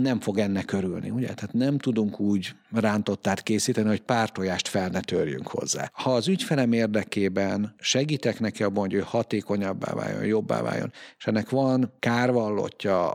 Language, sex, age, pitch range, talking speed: Hungarian, male, 50-69, 100-115 Hz, 155 wpm